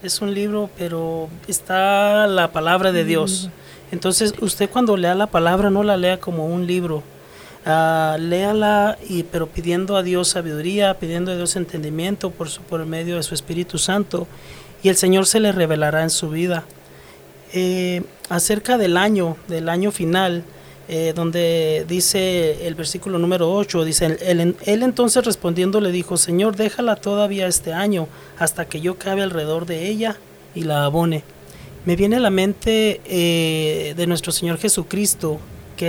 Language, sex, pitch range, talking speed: English, male, 165-195 Hz, 165 wpm